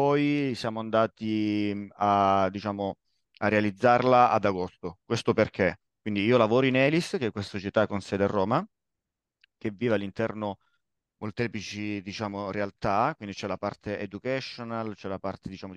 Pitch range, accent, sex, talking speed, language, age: 100-125 Hz, native, male, 145 wpm, Italian, 30-49